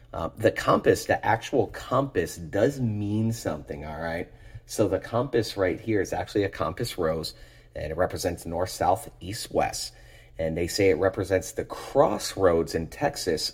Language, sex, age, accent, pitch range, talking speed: English, male, 30-49, American, 85-110 Hz, 165 wpm